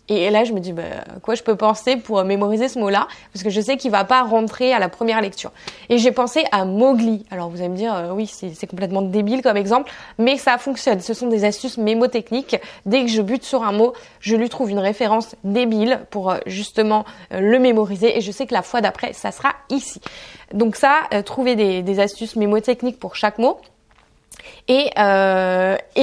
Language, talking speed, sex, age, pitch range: French, 215 wpm, female, 20-39, 200-255 Hz